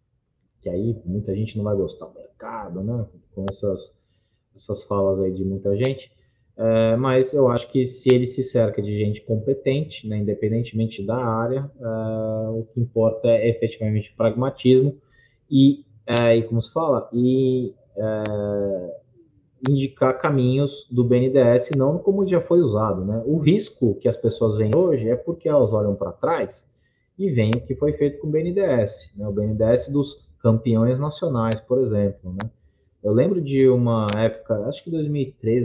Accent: Brazilian